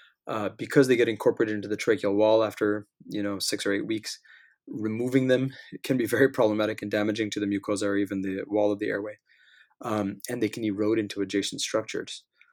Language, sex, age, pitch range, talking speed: English, male, 20-39, 100-120 Hz, 200 wpm